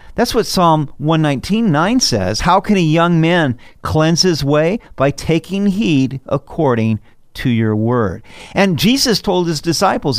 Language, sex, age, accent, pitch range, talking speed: English, male, 50-69, American, 125-185 Hz, 145 wpm